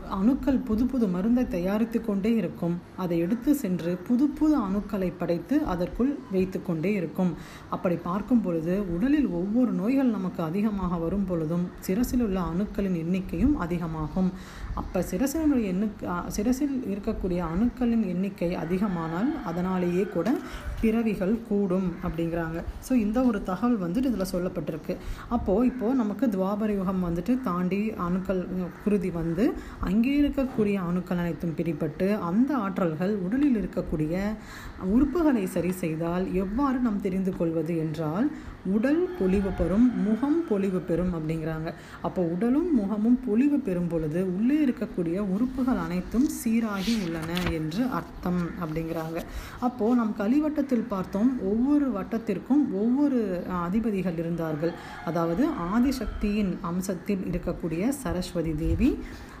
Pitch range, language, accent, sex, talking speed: 175-240 Hz, Tamil, native, female, 110 wpm